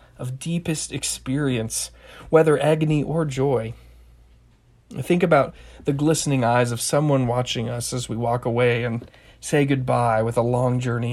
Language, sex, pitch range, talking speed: English, male, 110-140 Hz, 145 wpm